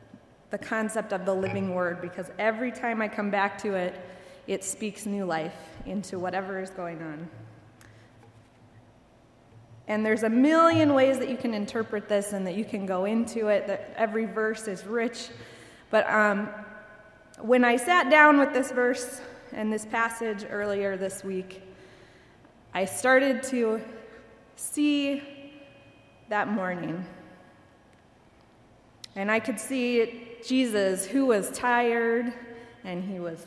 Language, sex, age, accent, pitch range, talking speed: English, female, 20-39, American, 185-235 Hz, 140 wpm